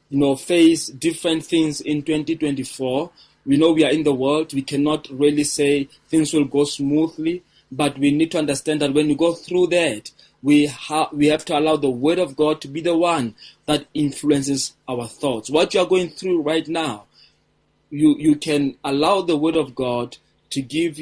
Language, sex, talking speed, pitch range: English, male, 195 wpm, 140-165 Hz